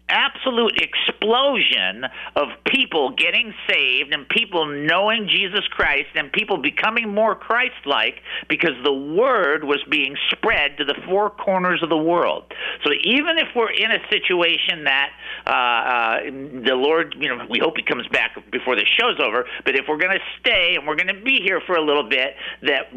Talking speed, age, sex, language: 180 wpm, 50-69, male, English